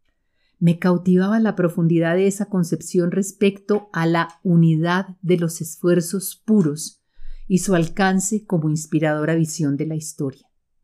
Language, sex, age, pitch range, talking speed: Spanish, female, 40-59, 155-185 Hz, 135 wpm